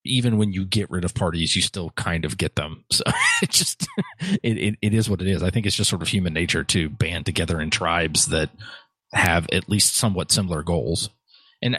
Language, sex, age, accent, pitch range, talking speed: English, male, 30-49, American, 95-115 Hz, 220 wpm